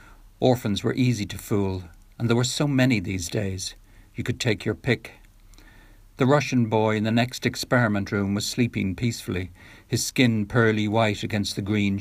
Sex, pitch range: male, 95-115 Hz